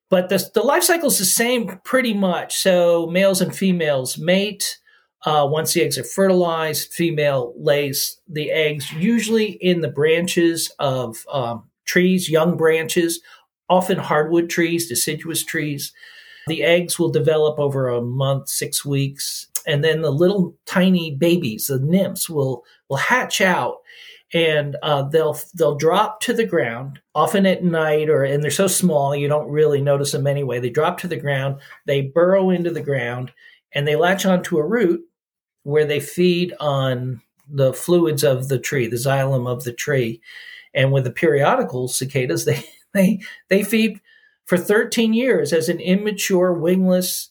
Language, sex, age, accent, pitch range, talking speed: English, male, 50-69, American, 145-185 Hz, 160 wpm